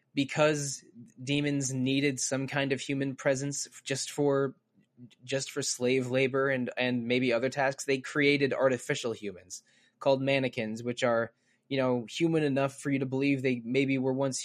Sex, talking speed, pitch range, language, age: male, 160 wpm, 115-135 Hz, English, 20-39